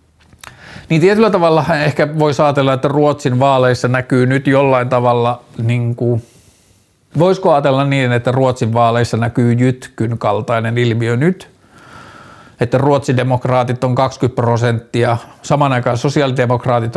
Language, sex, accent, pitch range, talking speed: Finnish, male, native, 120-140 Hz, 120 wpm